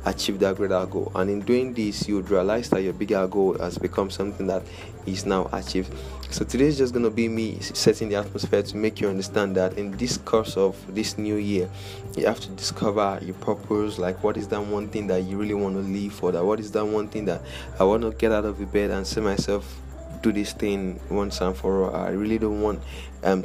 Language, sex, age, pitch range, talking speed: English, male, 20-39, 95-105 Hz, 235 wpm